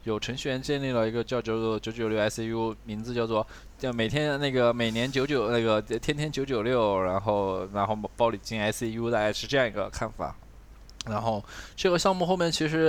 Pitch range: 105-125 Hz